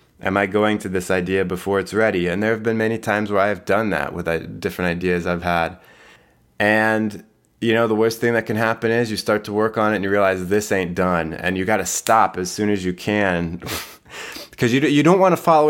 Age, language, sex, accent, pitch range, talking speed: 20-39, English, male, American, 90-110 Hz, 250 wpm